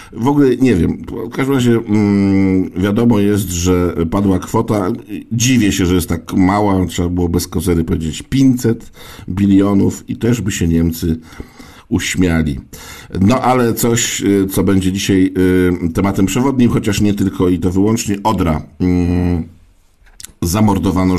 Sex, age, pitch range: male, 50-69, 85-105 Hz